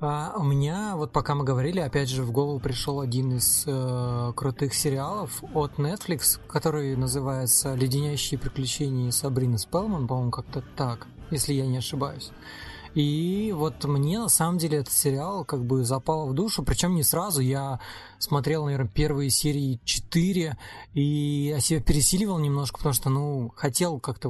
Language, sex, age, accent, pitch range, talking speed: Russian, male, 20-39, native, 130-160 Hz, 160 wpm